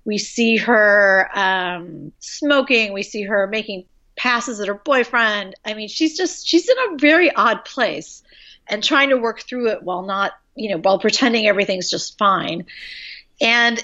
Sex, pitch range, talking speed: female, 195-275 Hz, 170 wpm